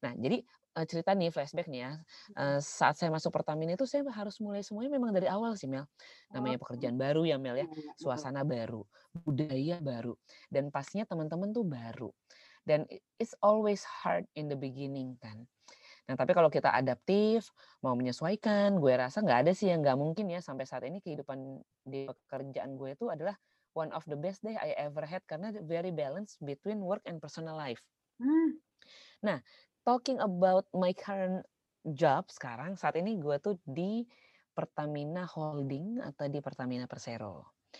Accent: native